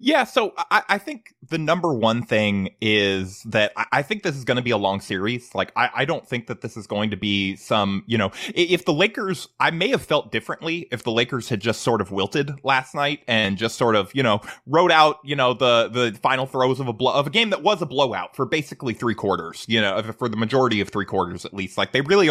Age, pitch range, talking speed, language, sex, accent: 20-39, 105-150 Hz, 255 wpm, English, male, American